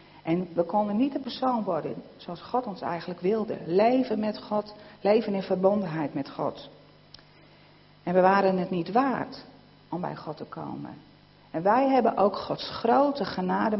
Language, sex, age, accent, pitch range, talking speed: Dutch, female, 40-59, Dutch, 170-215 Hz, 165 wpm